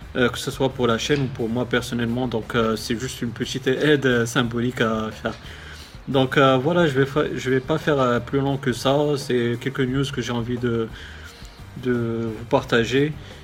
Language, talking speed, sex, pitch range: French, 210 wpm, male, 120-140 Hz